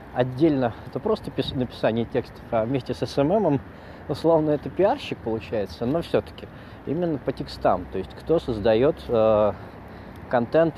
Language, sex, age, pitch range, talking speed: Russian, male, 20-39, 100-135 Hz, 130 wpm